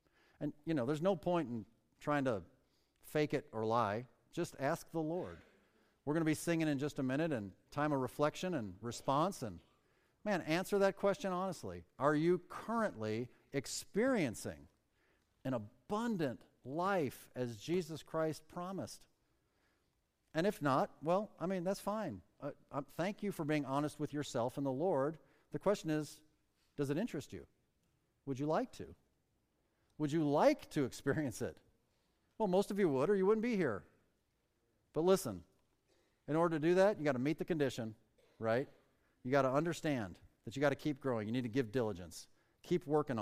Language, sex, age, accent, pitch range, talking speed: English, male, 50-69, American, 120-160 Hz, 175 wpm